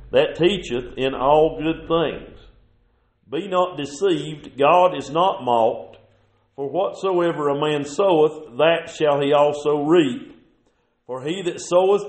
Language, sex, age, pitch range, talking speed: English, male, 50-69, 135-170 Hz, 135 wpm